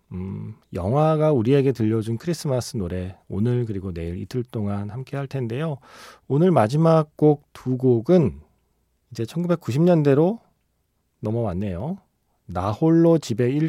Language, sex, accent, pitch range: Korean, male, native, 95-145 Hz